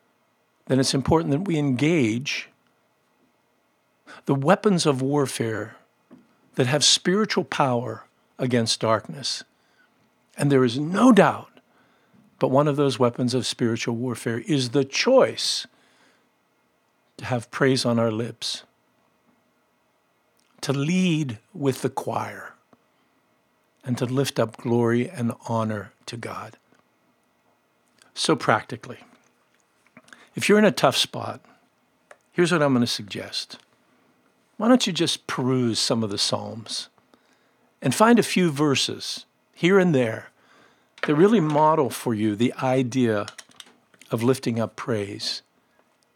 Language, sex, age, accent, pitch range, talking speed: English, male, 60-79, American, 120-155 Hz, 120 wpm